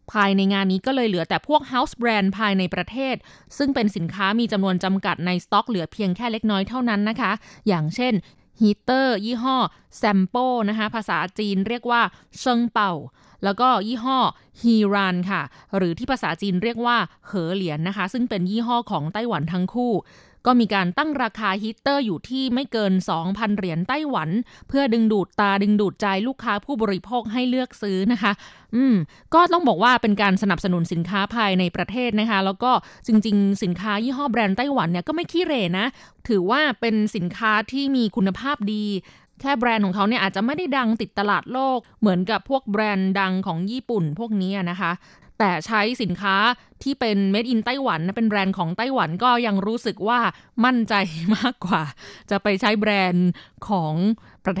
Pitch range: 195-245 Hz